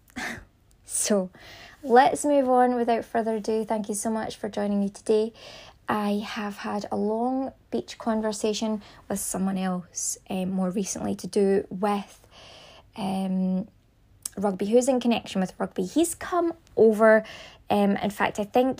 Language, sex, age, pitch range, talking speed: English, female, 20-39, 195-230 Hz, 145 wpm